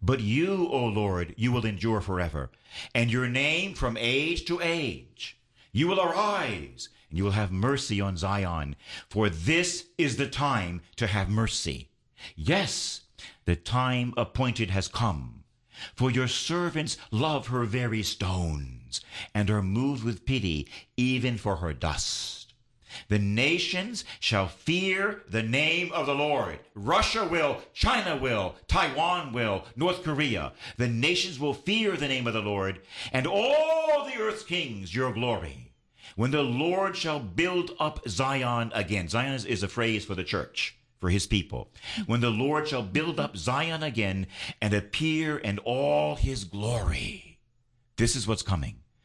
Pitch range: 100-145 Hz